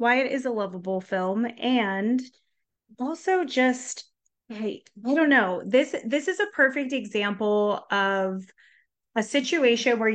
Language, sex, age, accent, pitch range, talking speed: English, female, 30-49, American, 195-245 Hz, 135 wpm